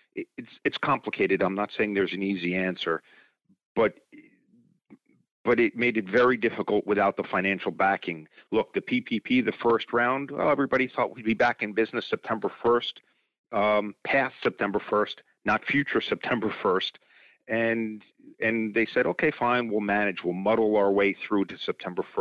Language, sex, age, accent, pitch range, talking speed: English, male, 40-59, American, 100-120 Hz, 160 wpm